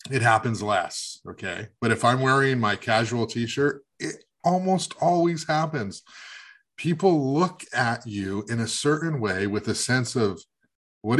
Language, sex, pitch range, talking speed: English, male, 100-140 Hz, 150 wpm